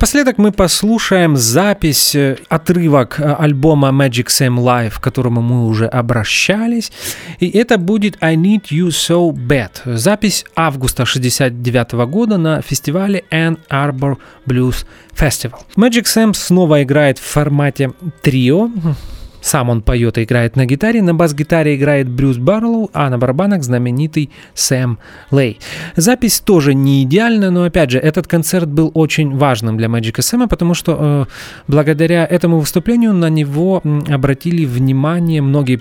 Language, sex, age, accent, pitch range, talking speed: Russian, male, 30-49, native, 130-175 Hz, 140 wpm